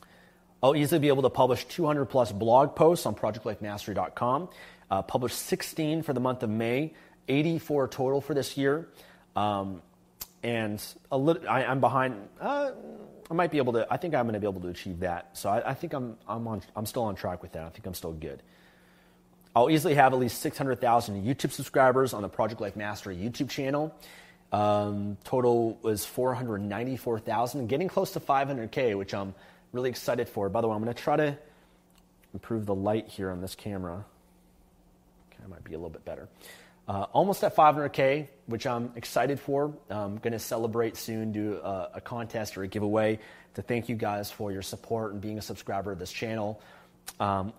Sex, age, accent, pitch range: male, 30-49, American, 100-135 Hz